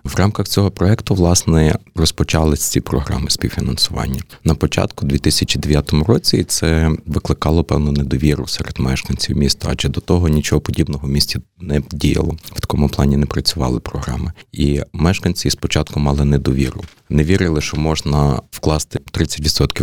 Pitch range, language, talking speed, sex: 70-85 Hz, Ukrainian, 140 wpm, male